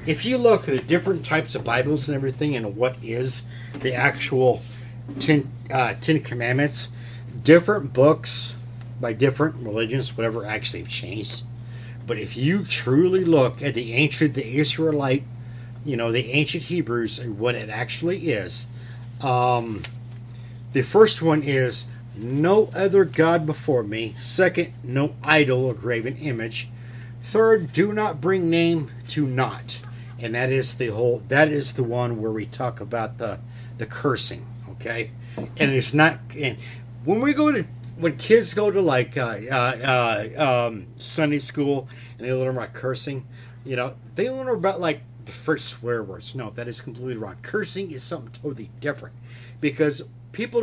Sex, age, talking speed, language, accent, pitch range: male, 50-69, 160 wpm, English, American, 120-150 Hz